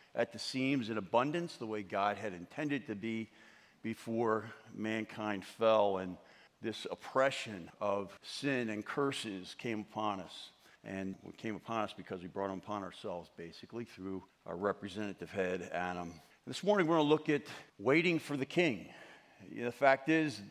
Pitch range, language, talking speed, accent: 110-150 Hz, English, 165 wpm, American